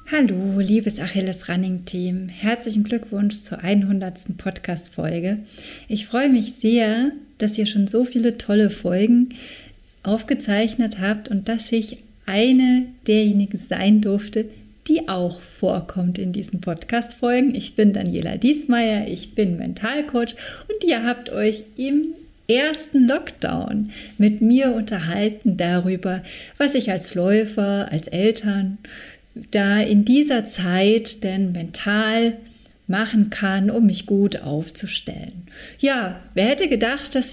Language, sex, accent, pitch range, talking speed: German, female, German, 200-240 Hz, 125 wpm